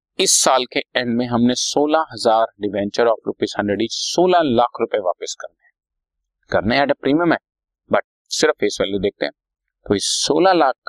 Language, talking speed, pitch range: Hindi, 130 wpm, 105-150 Hz